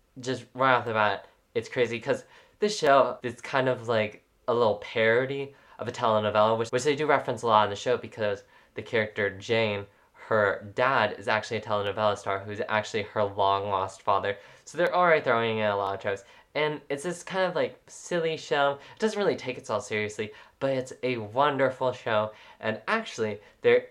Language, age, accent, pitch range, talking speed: English, 10-29, American, 105-140 Hz, 195 wpm